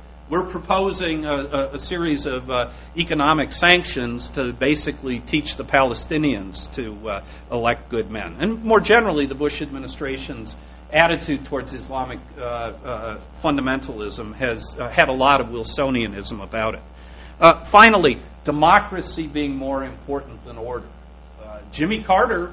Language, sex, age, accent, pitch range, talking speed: English, male, 50-69, American, 125-160 Hz, 135 wpm